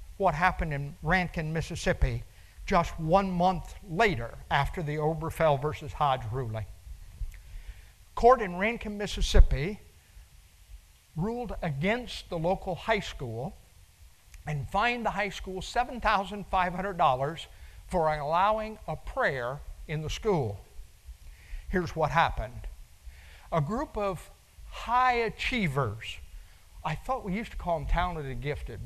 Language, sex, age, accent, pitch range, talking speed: English, male, 50-69, American, 125-205 Hz, 115 wpm